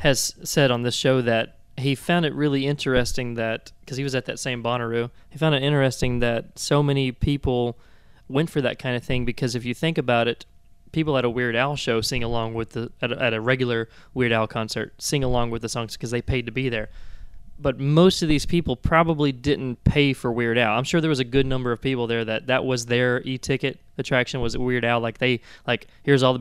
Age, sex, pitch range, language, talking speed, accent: 20-39, male, 115-135 Hz, English, 235 wpm, American